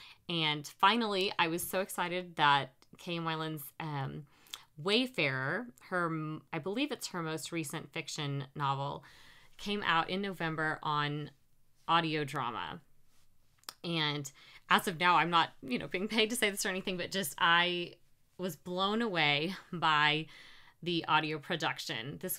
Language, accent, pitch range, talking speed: English, American, 155-195 Hz, 140 wpm